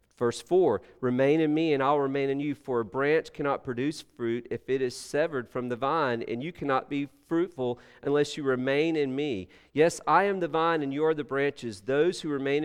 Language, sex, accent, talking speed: English, male, American, 220 wpm